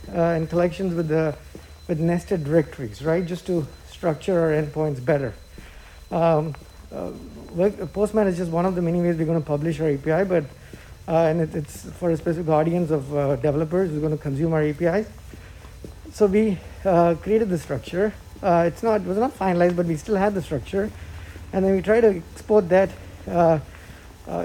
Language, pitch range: English, 155-185 Hz